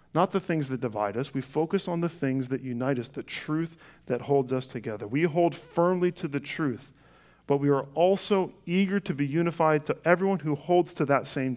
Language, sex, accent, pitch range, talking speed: English, male, American, 125-170 Hz, 215 wpm